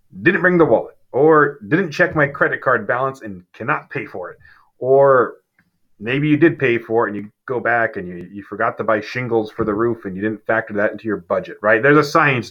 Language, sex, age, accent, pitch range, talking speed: English, male, 30-49, American, 100-130 Hz, 235 wpm